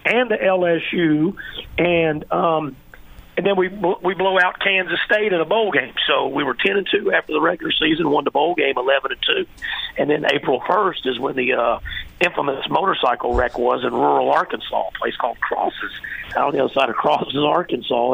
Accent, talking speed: American, 210 wpm